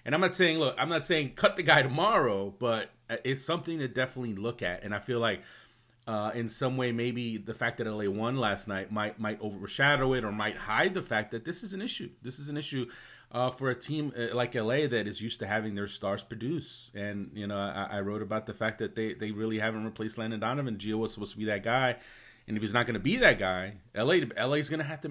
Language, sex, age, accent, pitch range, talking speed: English, male, 30-49, American, 105-135 Hz, 255 wpm